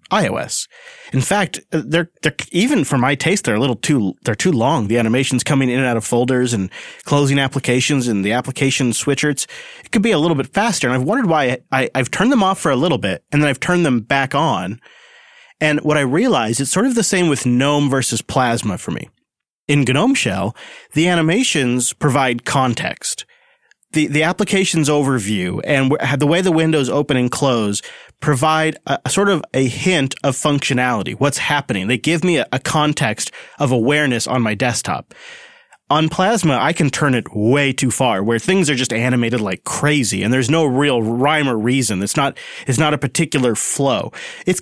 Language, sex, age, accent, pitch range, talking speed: English, male, 30-49, American, 125-160 Hz, 195 wpm